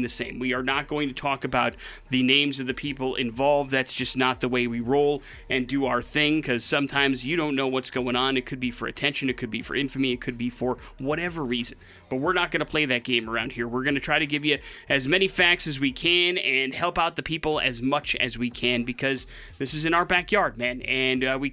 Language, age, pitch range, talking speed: English, 30-49, 125-145 Hz, 260 wpm